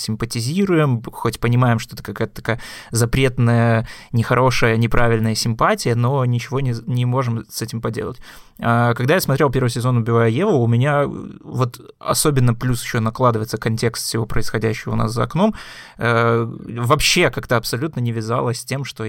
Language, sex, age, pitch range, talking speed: Russian, male, 20-39, 115-130 Hz, 150 wpm